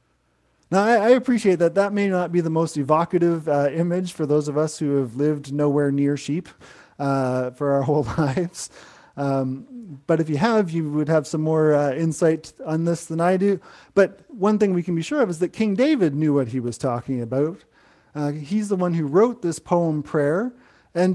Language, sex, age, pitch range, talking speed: English, male, 30-49, 150-205 Hz, 205 wpm